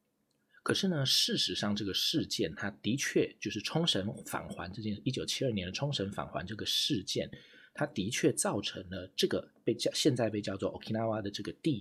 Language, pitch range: Chinese, 95-125 Hz